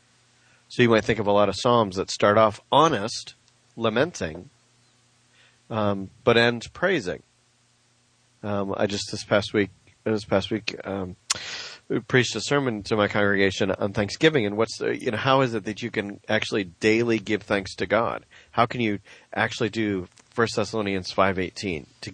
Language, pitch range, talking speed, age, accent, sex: English, 100-125 Hz, 170 wpm, 40-59, American, male